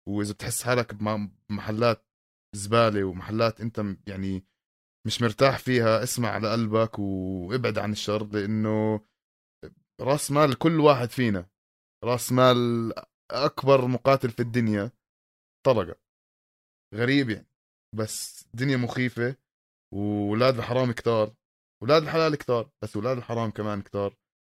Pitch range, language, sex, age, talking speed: 105-125 Hz, Arabic, male, 20-39, 115 wpm